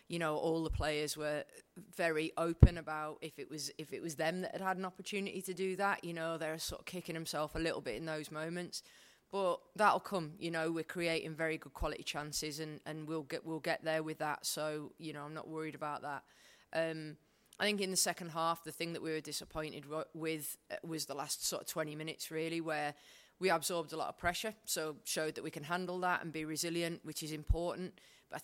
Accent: British